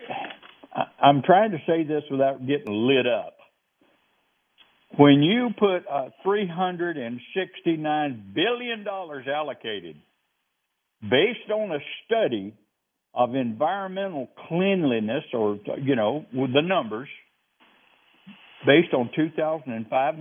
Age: 60-79